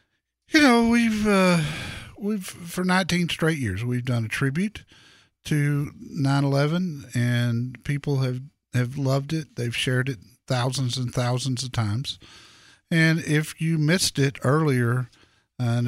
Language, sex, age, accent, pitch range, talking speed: English, male, 50-69, American, 125-160 Hz, 140 wpm